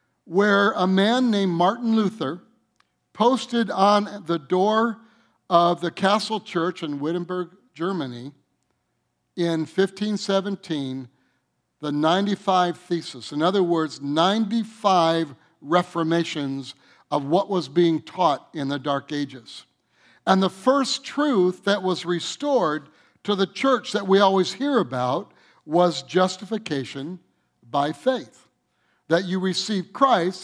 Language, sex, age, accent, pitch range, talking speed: English, male, 60-79, American, 155-195 Hz, 115 wpm